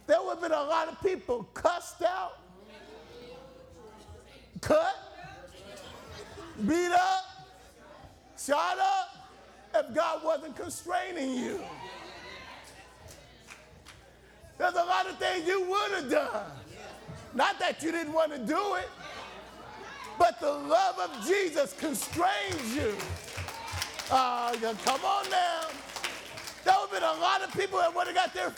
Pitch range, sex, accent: 325-380 Hz, male, American